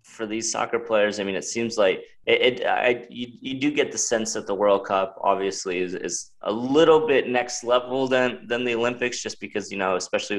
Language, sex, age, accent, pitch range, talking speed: English, male, 20-39, American, 95-115 Hz, 225 wpm